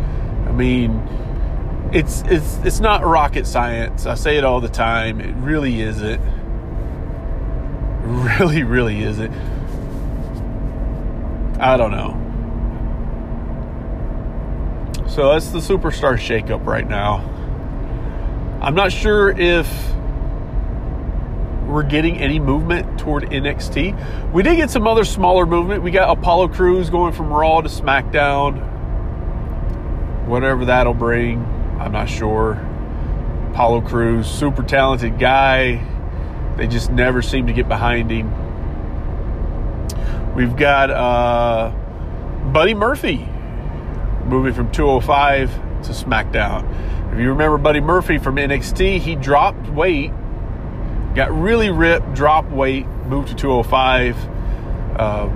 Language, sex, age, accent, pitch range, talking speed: English, male, 30-49, American, 110-145 Hz, 115 wpm